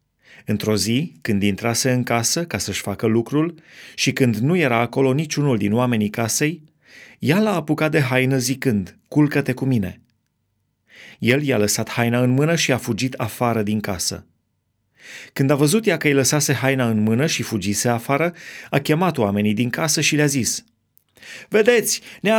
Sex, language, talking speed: male, Romanian, 170 wpm